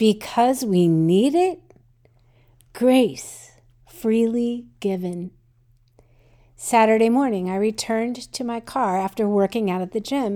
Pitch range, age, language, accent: 170-250 Hz, 50-69, English, American